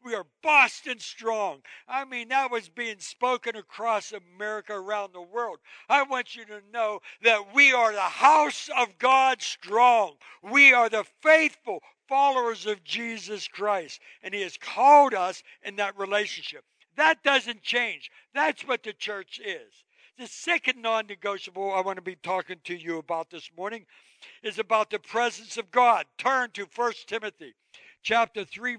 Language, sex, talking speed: English, male, 160 wpm